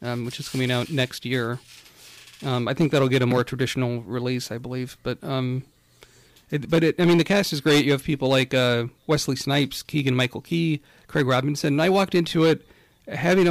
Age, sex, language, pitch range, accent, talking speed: 40-59, male, English, 120-150 Hz, American, 210 wpm